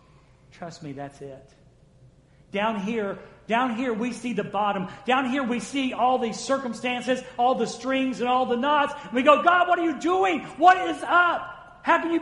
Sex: male